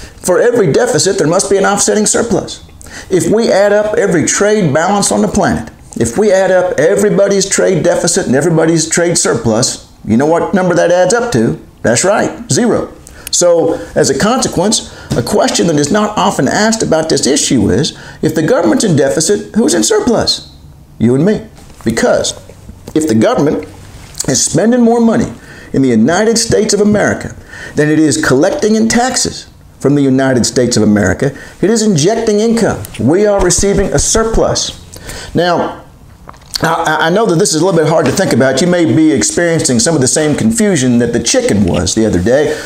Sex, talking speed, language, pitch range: male, 185 wpm, English, 135-215 Hz